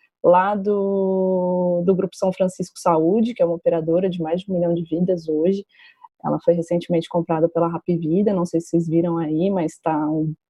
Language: Portuguese